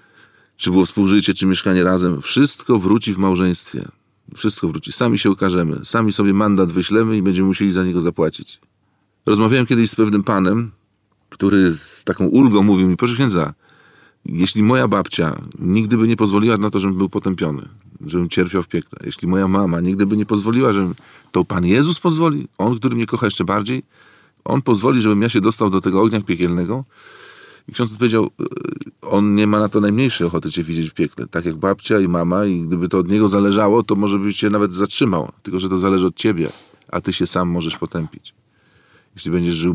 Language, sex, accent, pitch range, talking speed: Polish, male, native, 90-105 Hz, 195 wpm